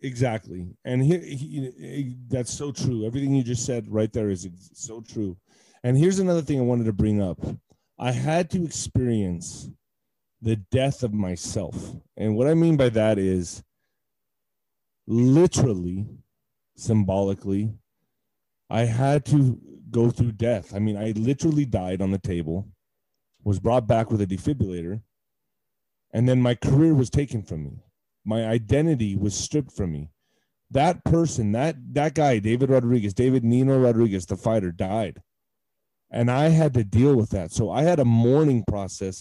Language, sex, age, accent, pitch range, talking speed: English, male, 30-49, American, 105-135 Hz, 160 wpm